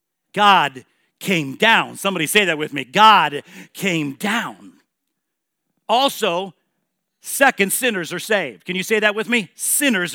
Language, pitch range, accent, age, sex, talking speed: English, 180-250 Hz, American, 50-69, male, 135 wpm